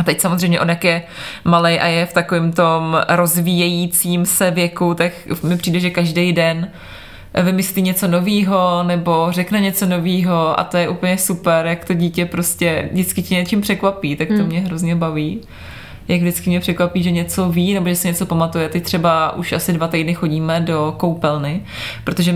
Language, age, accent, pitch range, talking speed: Czech, 20-39, native, 165-195 Hz, 180 wpm